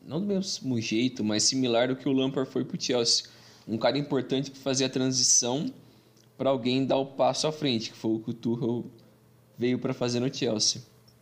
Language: Portuguese